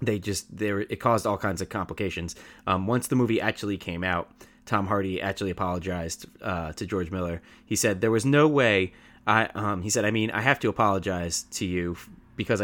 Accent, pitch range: American, 90-110 Hz